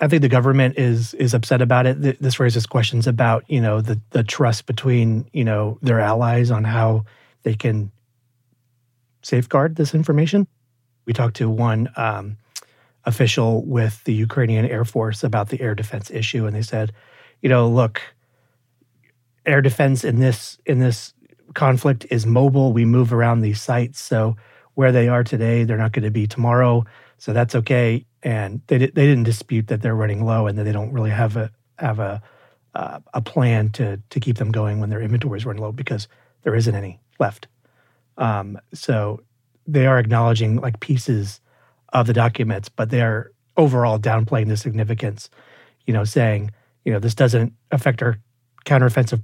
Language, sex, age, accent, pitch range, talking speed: English, male, 40-59, American, 110-125 Hz, 175 wpm